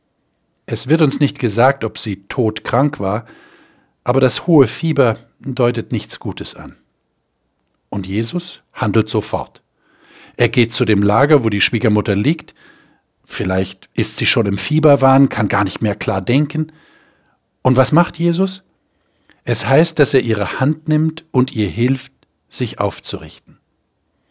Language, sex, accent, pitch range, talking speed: German, male, German, 110-150 Hz, 145 wpm